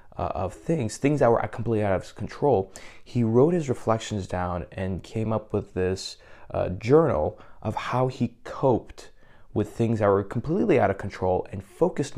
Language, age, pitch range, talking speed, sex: English, 20-39, 95-115 Hz, 180 wpm, male